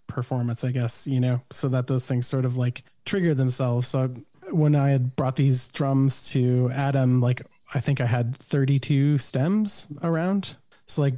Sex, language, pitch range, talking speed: male, English, 125-140 Hz, 175 wpm